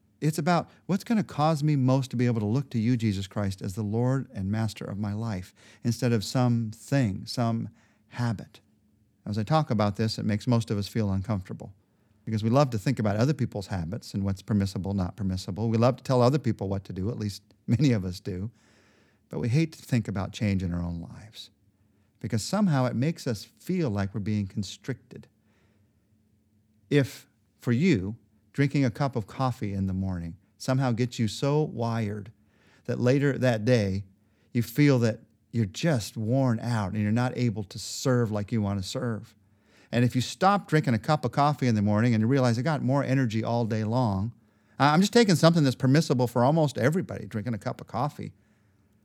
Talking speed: 205 wpm